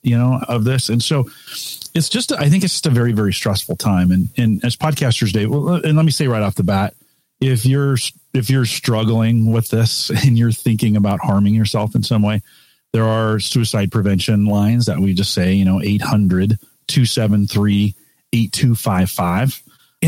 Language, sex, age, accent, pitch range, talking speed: English, male, 40-59, American, 100-130 Hz, 175 wpm